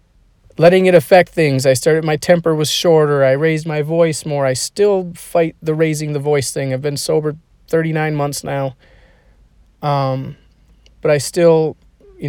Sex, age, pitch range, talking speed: male, 30-49, 120-150 Hz, 165 wpm